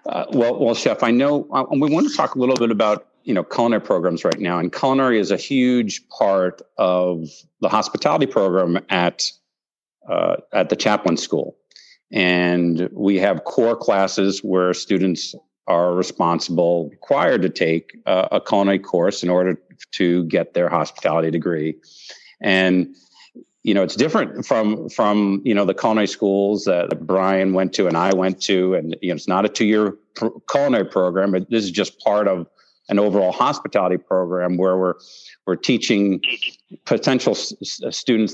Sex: male